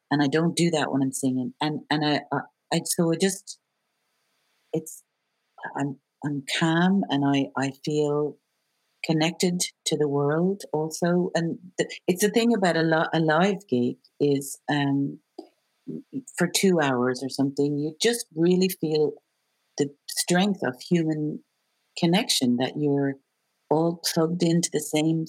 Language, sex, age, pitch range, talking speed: English, female, 50-69, 135-170 Hz, 145 wpm